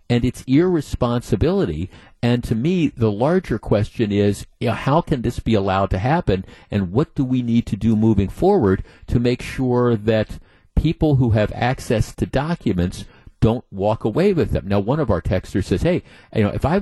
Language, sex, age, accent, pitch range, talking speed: English, male, 50-69, American, 105-135 Hz, 195 wpm